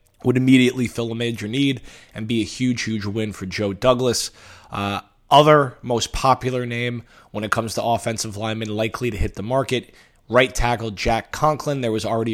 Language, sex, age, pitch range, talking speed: English, male, 20-39, 105-125 Hz, 185 wpm